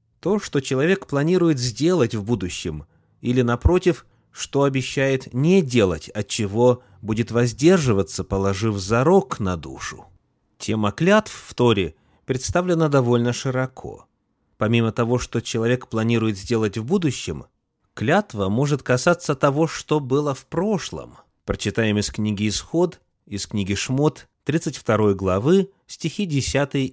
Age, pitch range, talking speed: 30-49, 105-150 Hz, 125 wpm